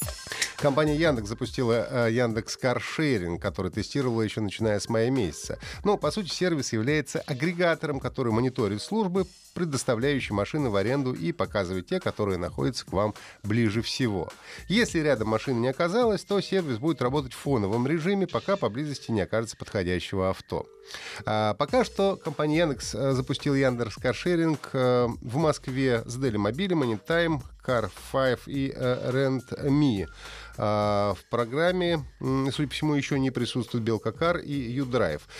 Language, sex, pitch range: Russian, male, 110-160 Hz